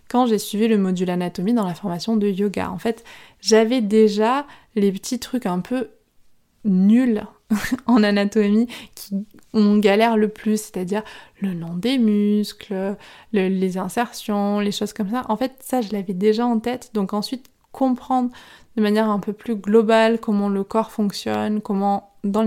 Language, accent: French, French